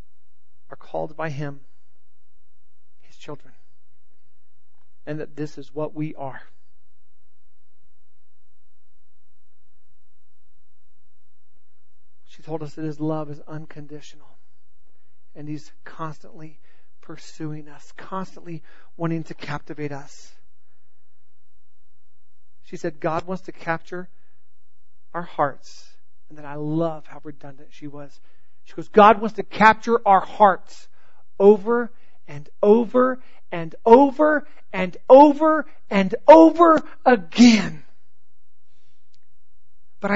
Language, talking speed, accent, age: English, 95 wpm, American, 40-59